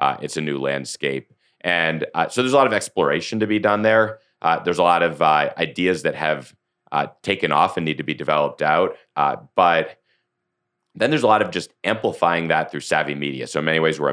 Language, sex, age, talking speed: English, male, 30-49, 225 wpm